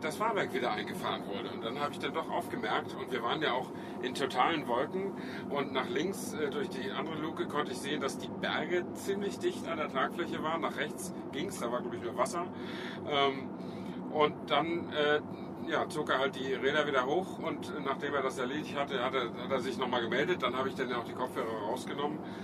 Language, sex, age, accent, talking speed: German, male, 50-69, German, 215 wpm